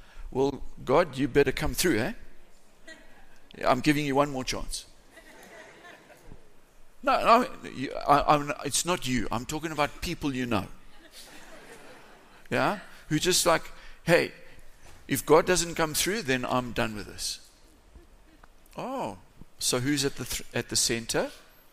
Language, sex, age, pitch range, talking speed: English, male, 50-69, 110-145 Hz, 140 wpm